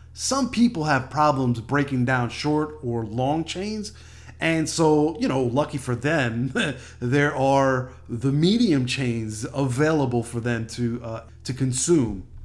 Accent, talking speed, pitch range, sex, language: American, 140 wpm, 120-165 Hz, male, English